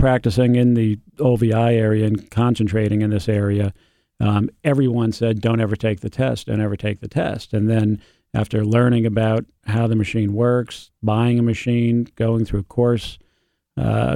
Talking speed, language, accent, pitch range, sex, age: 170 wpm, English, American, 105-120 Hz, male, 40-59